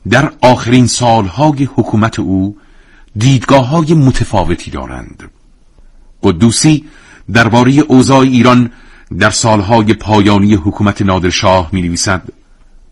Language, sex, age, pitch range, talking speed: Persian, male, 50-69, 90-110 Hz, 90 wpm